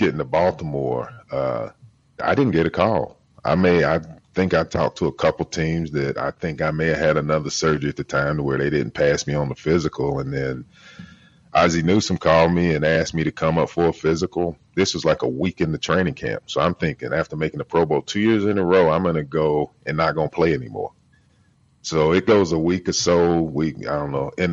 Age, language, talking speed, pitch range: 30-49, English, 240 wpm, 75-90 Hz